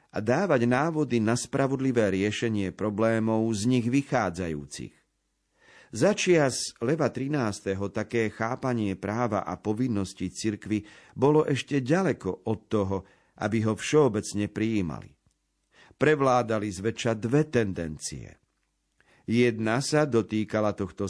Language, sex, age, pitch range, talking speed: Slovak, male, 50-69, 105-125 Hz, 100 wpm